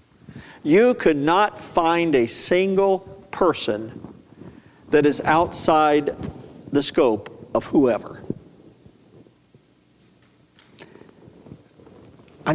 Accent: American